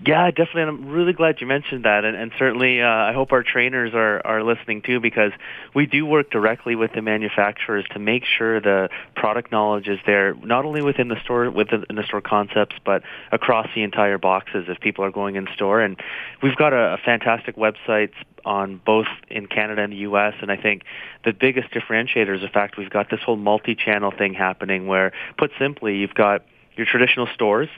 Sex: male